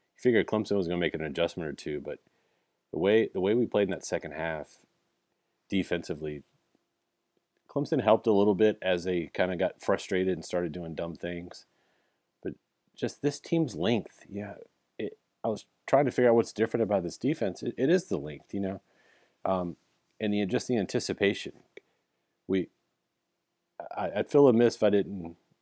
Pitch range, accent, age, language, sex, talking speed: 85-100 Hz, American, 30-49, English, male, 180 wpm